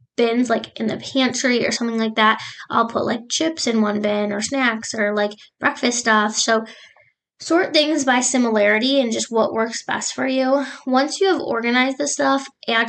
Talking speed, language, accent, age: 190 wpm, English, American, 10-29